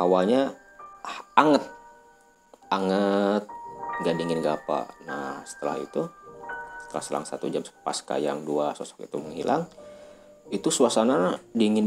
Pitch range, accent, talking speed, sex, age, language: 90-120 Hz, native, 120 wpm, male, 40-59, Indonesian